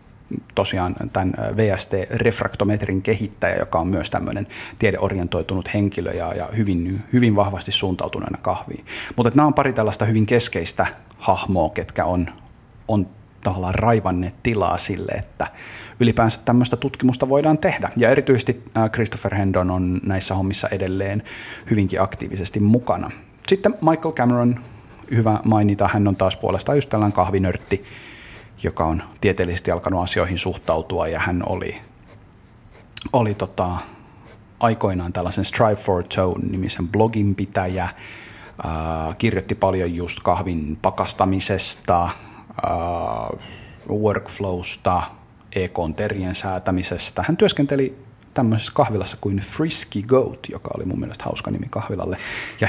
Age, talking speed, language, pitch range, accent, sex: 30-49, 115 wpm, Finnish, 95-115 Hz, native, male